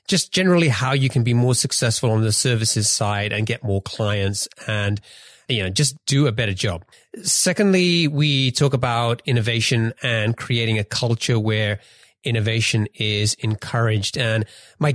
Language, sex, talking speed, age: English, male, 155 wpm, 30-49